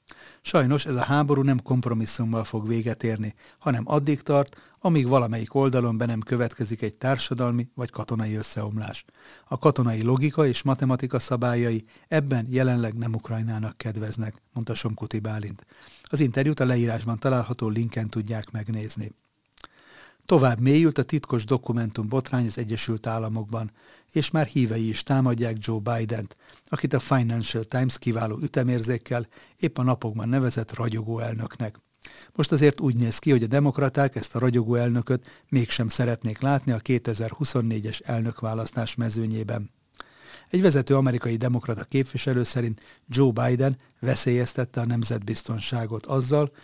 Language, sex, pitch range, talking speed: Hungarian, male, 115-135 Hz, 135 wpm